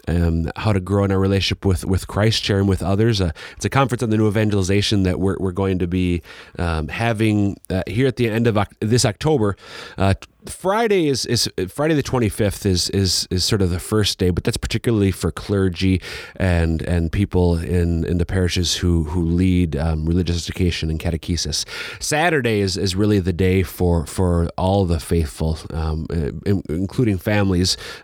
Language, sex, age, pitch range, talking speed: English, male, 30-49, 90-105 Hz, 185 wpm